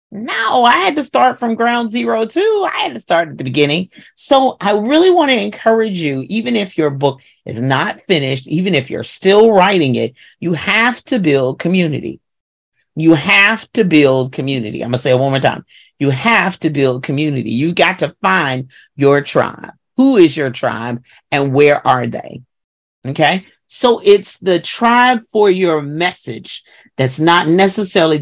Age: 40-59